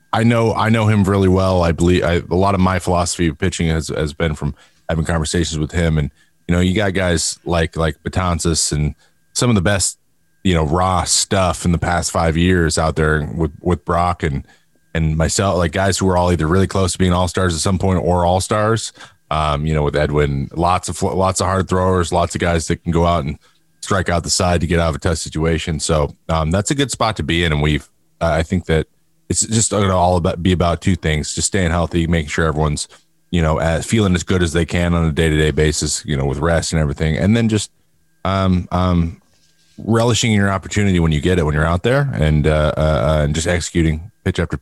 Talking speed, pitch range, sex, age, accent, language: 240 wpm, 80-95 Hz, male, 30-49, American, English